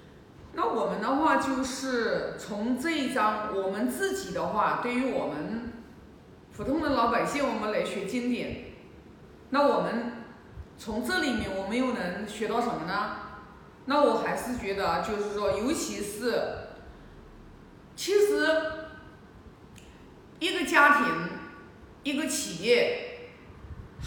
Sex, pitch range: female, 235-310 Hz